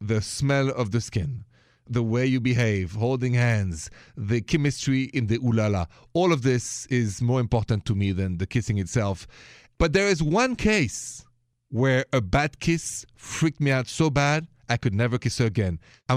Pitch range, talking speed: 115-145 Hz, 180 wpm